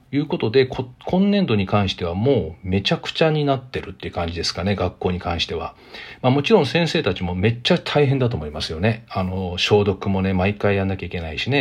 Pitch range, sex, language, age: 95-145 Hz, male, Japanese, 40-59